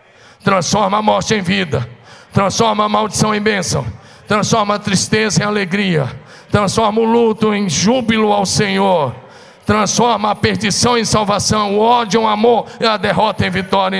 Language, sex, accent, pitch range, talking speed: Portuguese, male, Brazilian, 160-210 Hz, 155 wpm